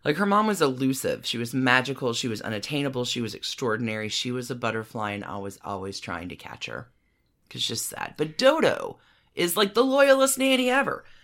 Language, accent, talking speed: English, American, 200 wpm